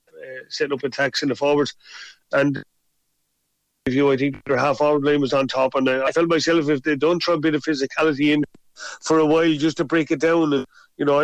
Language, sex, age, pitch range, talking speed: English, male, 30-49, 140-155 Hz, 235 wpm